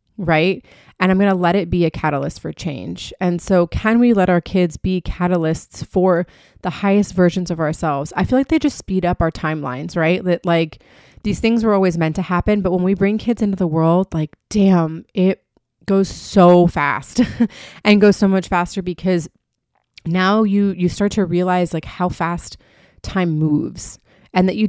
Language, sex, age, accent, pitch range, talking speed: English, female, 30-49, American, 155-190 Hz, 190 wpm